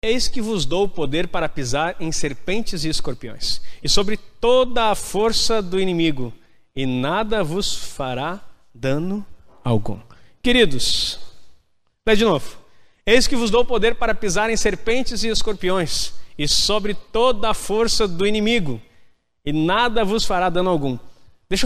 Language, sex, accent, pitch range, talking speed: Portuguese, male, Brazilian, 145-220 Hz, 150 wpm